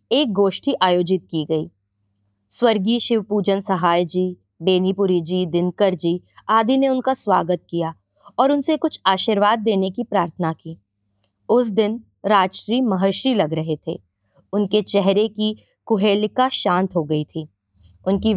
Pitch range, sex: 155-220 Hz, female